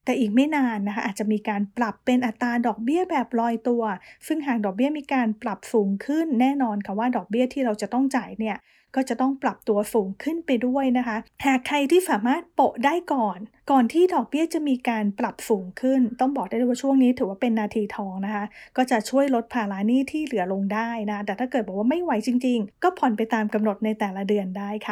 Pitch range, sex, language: 215-270 Hz, female, English